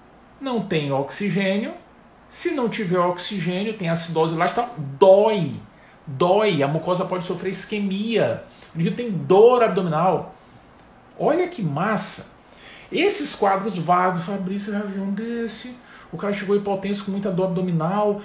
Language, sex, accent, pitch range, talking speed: Portuguese, male, Brazilian, 180-235 Hz, 140 wpm